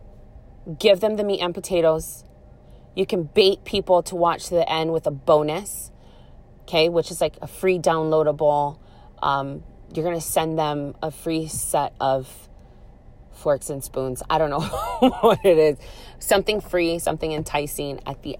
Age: 30-49